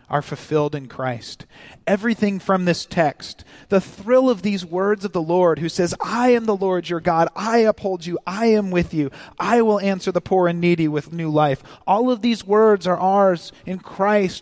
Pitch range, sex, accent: 160-200 Hz, male, American